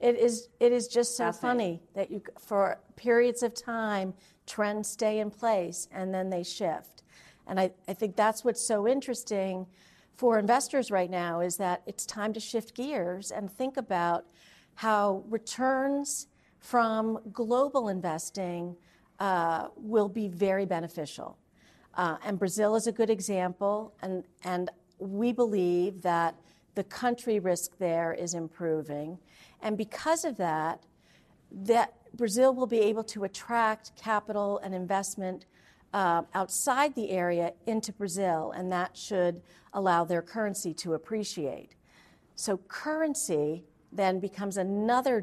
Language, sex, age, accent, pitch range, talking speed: English, female, 50-69, American, 175-225 Hz, 140 wpm